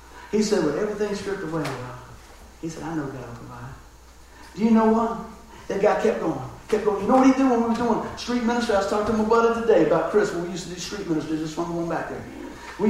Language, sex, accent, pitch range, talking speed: English, male, American, 150-215 Hz, 260 wpm